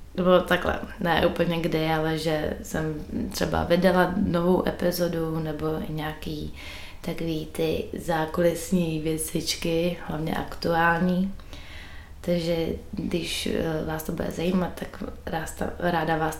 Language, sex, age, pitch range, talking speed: Czech, female, 20-39, 150-165 Hz, 105 wpm